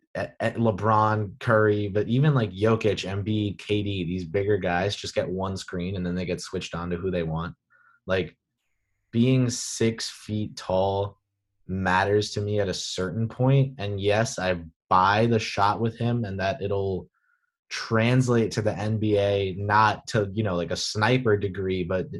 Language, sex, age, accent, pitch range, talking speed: English, male, 20-39, American, 90-110 Hz, 170 wpm